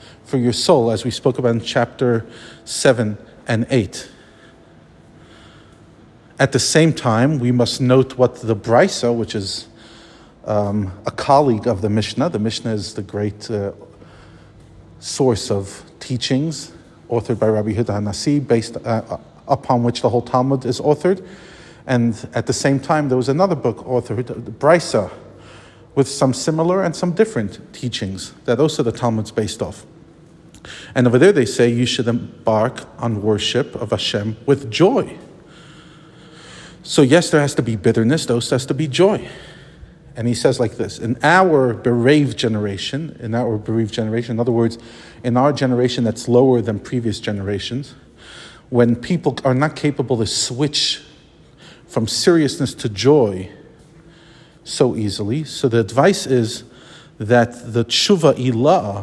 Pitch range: 115-145 Hz